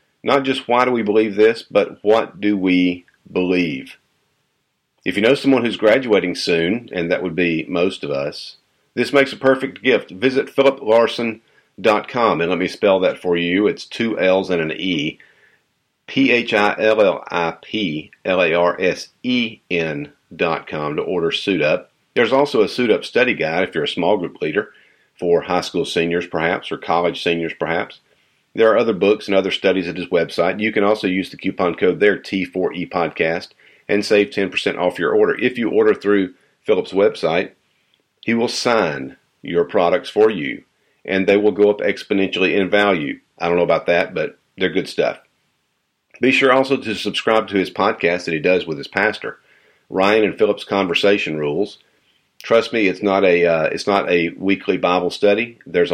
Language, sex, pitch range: English, male, 95-125 Hz